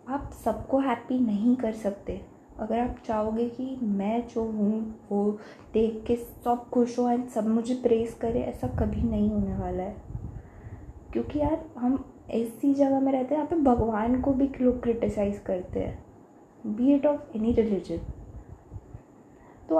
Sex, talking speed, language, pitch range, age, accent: female, 160 wpm, Hindi, 210-265 Hz, 20-39, native